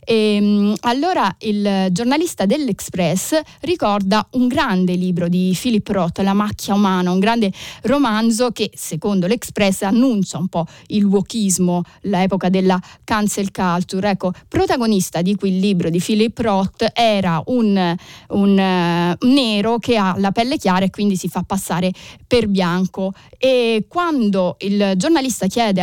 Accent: native